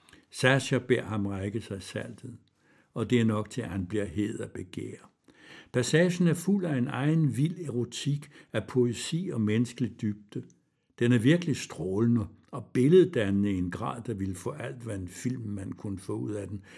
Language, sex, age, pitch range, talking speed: Danish, male, 60-79, 105-135 Hz, 185 wpm